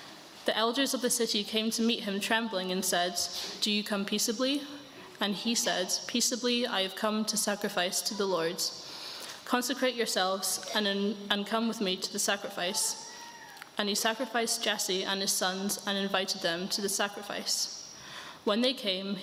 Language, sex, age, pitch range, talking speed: English, female, 20-39, 190-225 Hz, 170 wpm